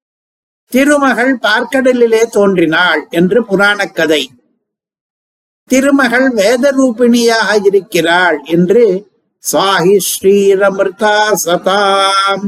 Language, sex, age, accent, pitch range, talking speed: Tamil, male, 60-79, native, 185-230 Hz, 65 wpm